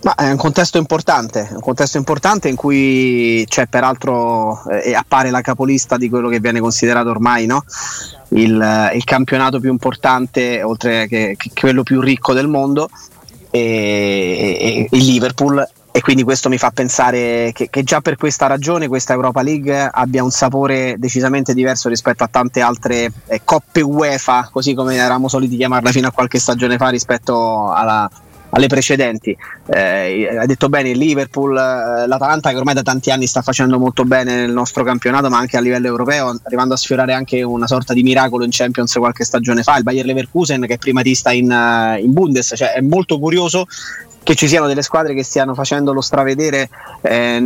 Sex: male